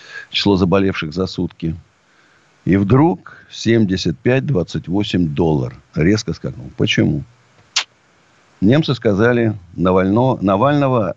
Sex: male